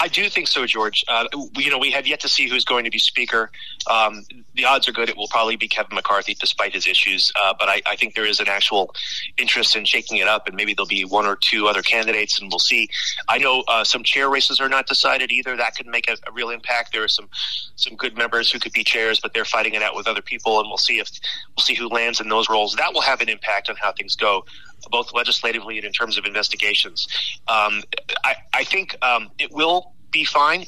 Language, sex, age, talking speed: English, male, 30-49, 255 wpm